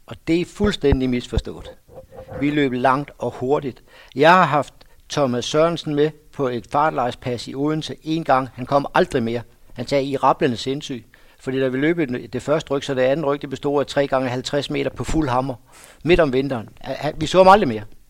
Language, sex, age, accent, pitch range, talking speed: Danish, male, 60-79, native, 125-150 Hz, 195 wpm